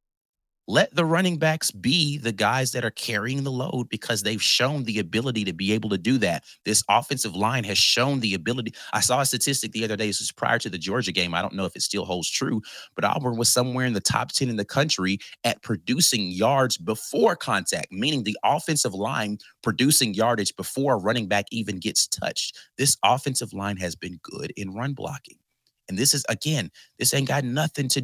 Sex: male